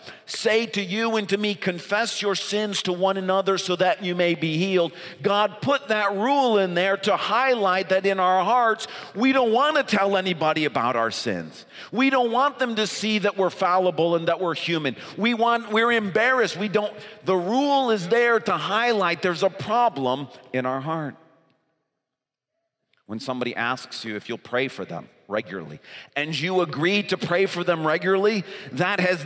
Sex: male